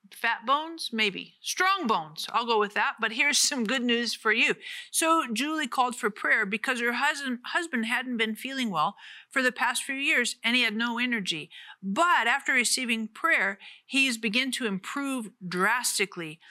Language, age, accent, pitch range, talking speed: English, 50-69, American, 210-270 Hz, 175 wpm